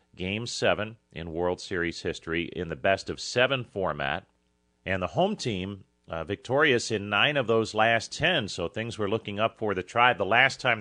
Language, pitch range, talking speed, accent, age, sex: English, 85-110 Hz, 185 wpm, American, 40-59, male